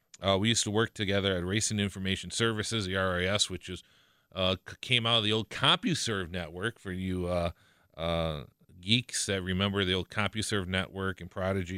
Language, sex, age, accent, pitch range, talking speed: English, male, 40-59, American, 90-105 Hz, 175 wpm